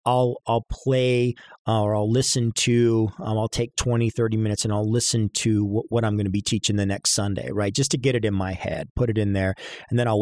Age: 40-59